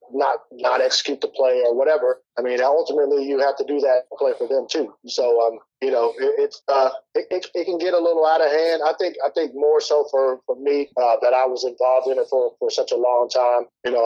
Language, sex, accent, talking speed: English, male, American, 255 wpm